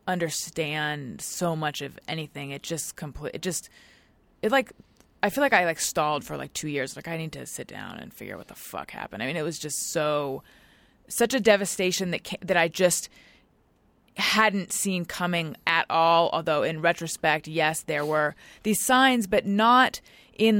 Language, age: English, 20-39